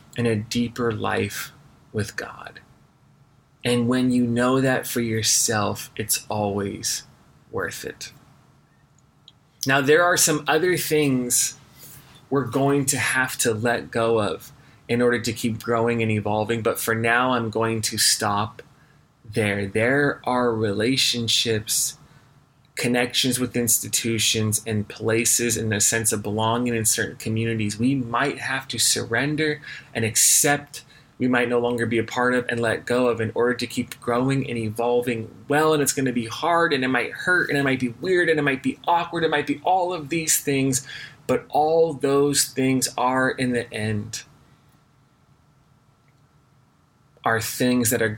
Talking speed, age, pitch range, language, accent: 160 wpm, 30-49, 115-135 Hz, English, American